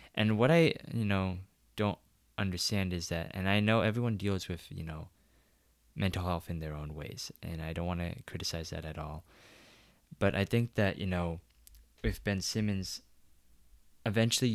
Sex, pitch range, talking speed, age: male, 85-105 Hz, 175 wpm, 20-39